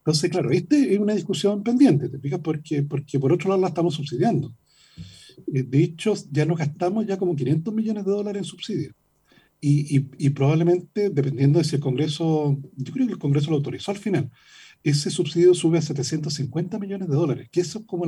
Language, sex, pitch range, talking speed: Spanish, male, 145-200 Hz, 195 wpm